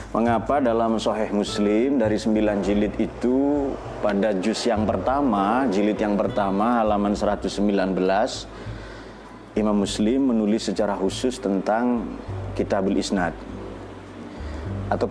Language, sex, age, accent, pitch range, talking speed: Indonesian, male, 30-49, native, 100-110 Hz, 105 wpm